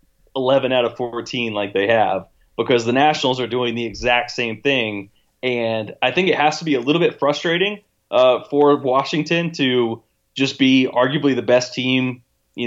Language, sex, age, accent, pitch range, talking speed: English, male, 20-39, American, 115-135 Hz, 180 wpm